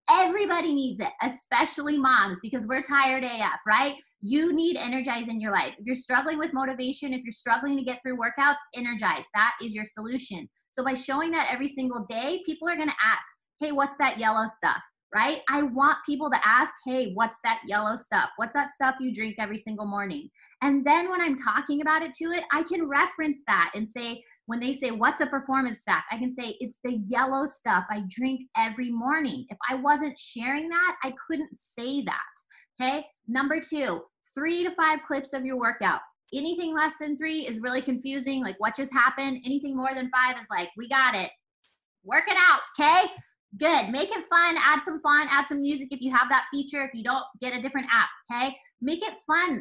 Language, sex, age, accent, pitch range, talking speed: English, female, 20-39, American, 240-295 Hz, 205 wpm